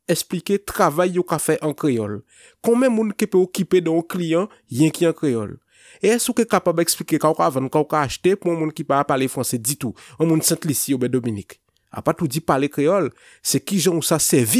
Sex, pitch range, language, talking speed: male, 135-190 Hz, French, 190 wpm